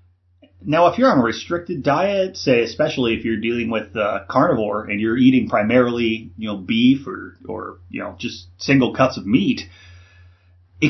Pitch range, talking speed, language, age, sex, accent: 105-140 Hz, 175 wpm, English, 30-49, male, American